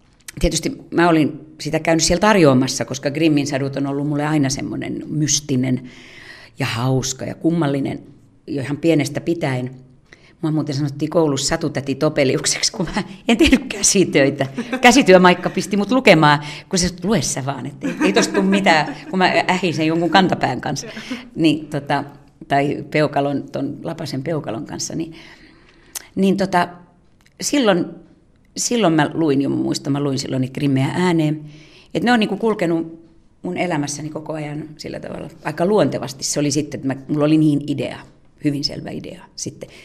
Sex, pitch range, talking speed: female, 140-175 Hz, 150 wpm